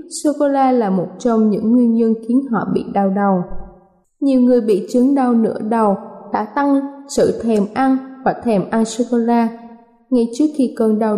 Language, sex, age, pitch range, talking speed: Vietnamese, female, 20-39, 215-270 Hz, 200 wpm